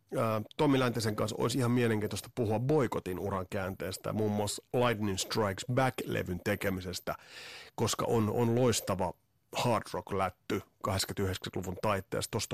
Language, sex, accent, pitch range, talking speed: Finnish, male, native, 105-125 Hz, 125 wpm